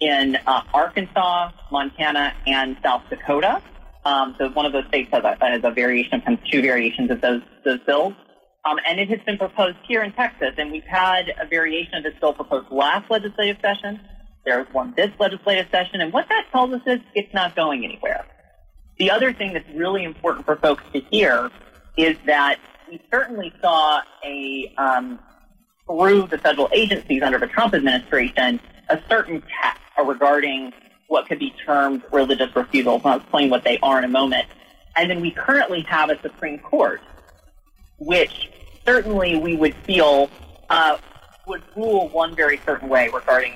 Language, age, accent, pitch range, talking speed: English, 30-49, American, 140-200 Hz, 170 wpm